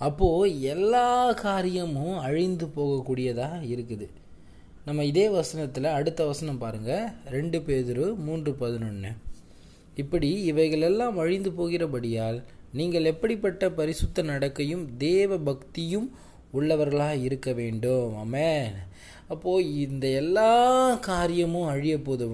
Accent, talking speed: native, 95 wpm